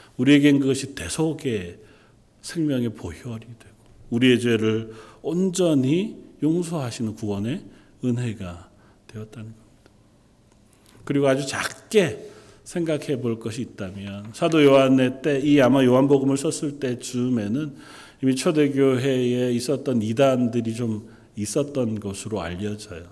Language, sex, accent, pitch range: Korean, male, native, 110-140 Hz